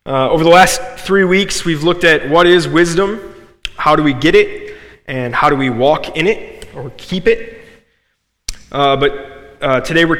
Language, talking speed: English, 190 wpm